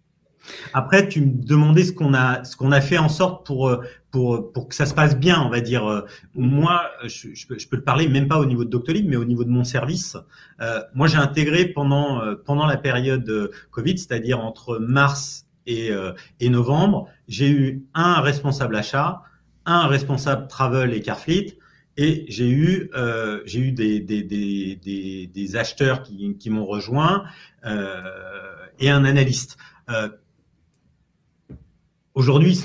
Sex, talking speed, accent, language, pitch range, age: male, 170 wpm, French, French, 115-150 Hz, 40-59